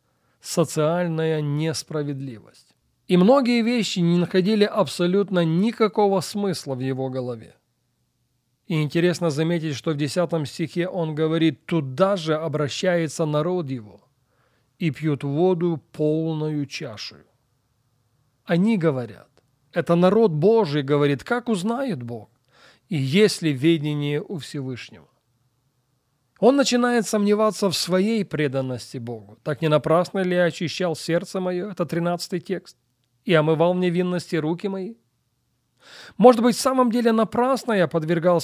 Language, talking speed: Russian, 125 wpm